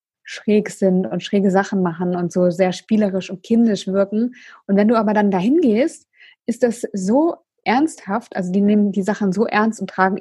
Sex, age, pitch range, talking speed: female, 20-39, 180-205 Hz, 195 wpm